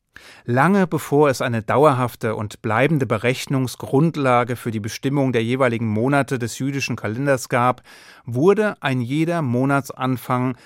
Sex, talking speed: male, 125 wpm